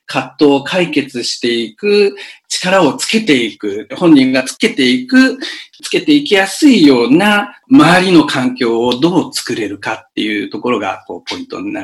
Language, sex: Japanese, male